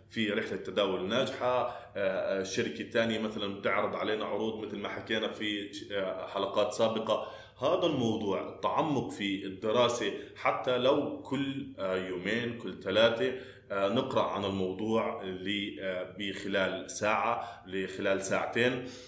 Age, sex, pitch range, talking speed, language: 20-39, male, 100-120 Hz, 110 wpm, Arabic